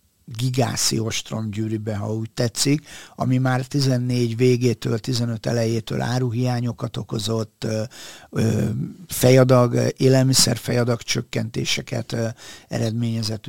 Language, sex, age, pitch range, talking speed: Hungarian, male, 50-69, 115-130 Hz, 90 wpm